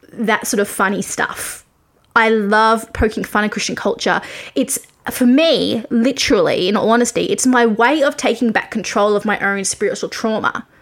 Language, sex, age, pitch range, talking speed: English, female, 20-39, 220-285 Hz, 170 wpm